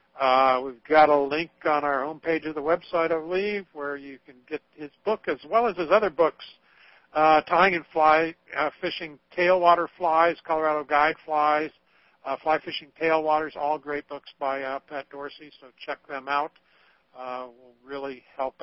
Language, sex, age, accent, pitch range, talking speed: English, male, 60-79, American, 125-160 Hz, 175 wpm